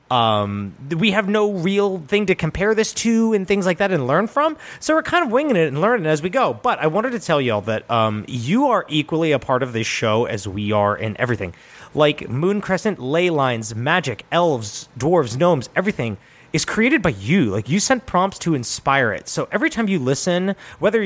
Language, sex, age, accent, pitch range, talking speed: English, male, 30-49, American, 130-185 Hz, 215 wpm